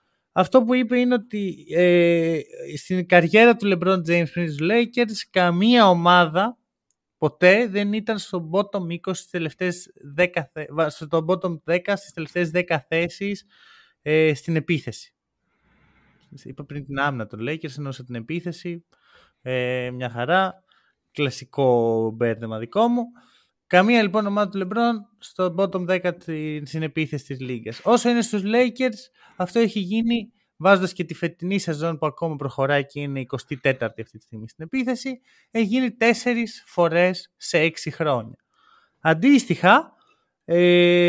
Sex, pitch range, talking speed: male, 150-205 Hz, 135 wpm